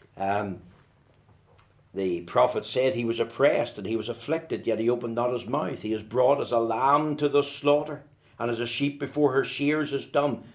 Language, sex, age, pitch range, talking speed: English, male, 60-79, 125-200 Hz, 200 wpm